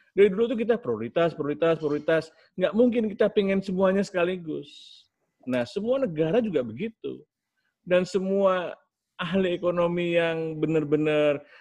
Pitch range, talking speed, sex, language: 120-160 Hz, 125 wpm, male, Indonesian